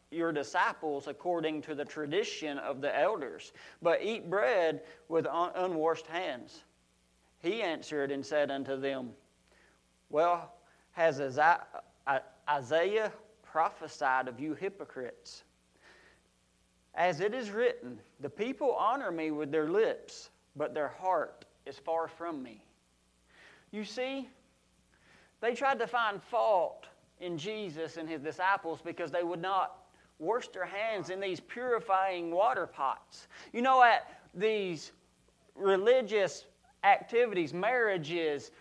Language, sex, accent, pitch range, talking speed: English, male, American, 165-250 Hz, 120 wpm